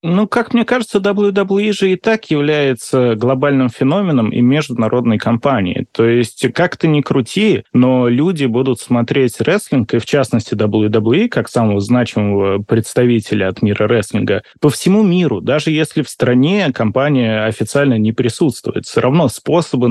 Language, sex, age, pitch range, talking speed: Russian, male, 20-39, 115-170 Hz, 150 wpm